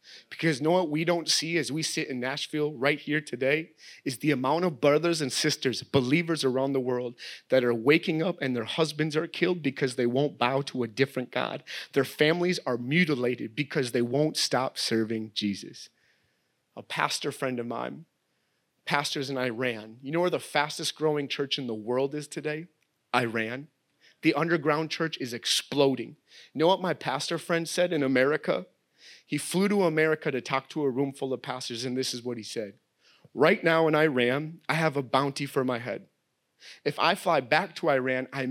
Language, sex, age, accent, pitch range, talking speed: English, male, 30-49, American, 130-160 Hz, 190 wpm